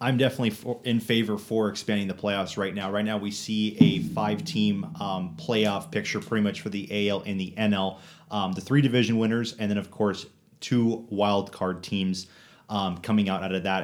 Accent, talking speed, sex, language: American, 210 wpm, male, English